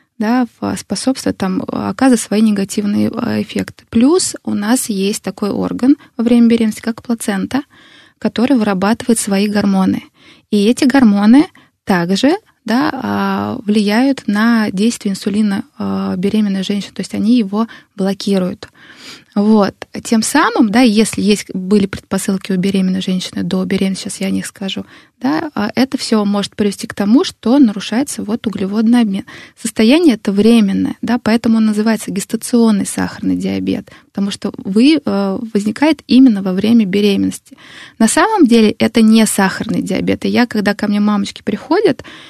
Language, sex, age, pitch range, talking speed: Russian, female, 20-39, 200-235 Hz, 140 wpm